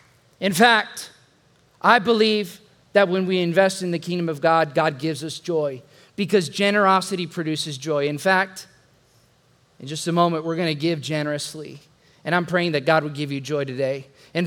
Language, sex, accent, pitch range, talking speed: English, male, American, 155-205 Hz, 180 wpm